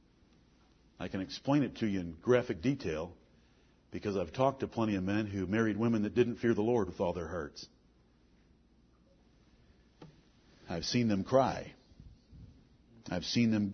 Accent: American